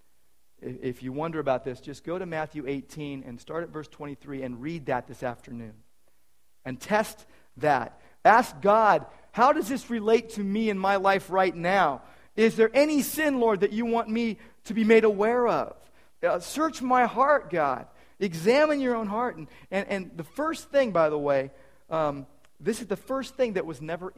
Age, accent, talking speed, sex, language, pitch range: 40-59, American, 190 wpm, male, English, 150-250 Hz